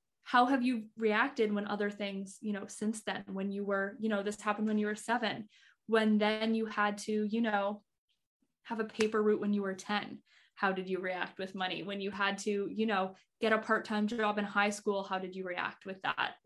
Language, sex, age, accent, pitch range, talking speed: English, female, 10-29, American, 205-250 Hz, 230 wpm